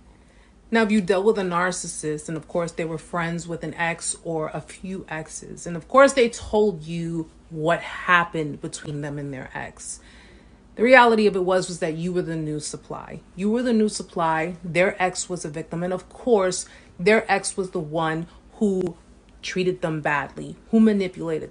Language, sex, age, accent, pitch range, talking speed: English, female, 30-49, American, 160-210 Hz, 195 wpm